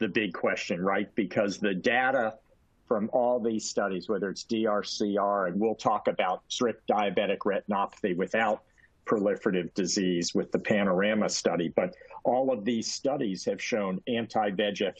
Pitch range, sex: 100-125 Hz, male